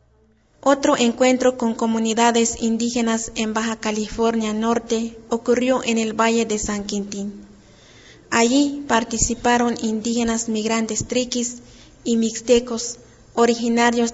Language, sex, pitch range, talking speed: Spanish, female, 220-240 Hz, 100 wpm